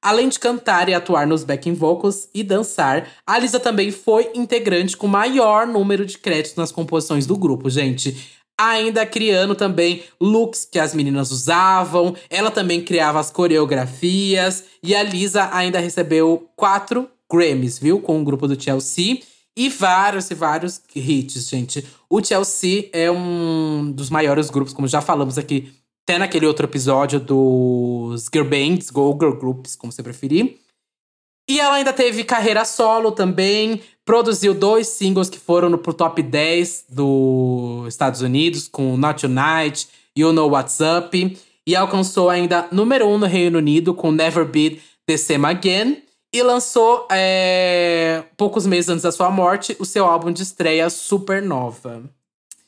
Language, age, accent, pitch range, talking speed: Portuguese, 20-39, Brazilian, 150-200 Hz, 155 wpm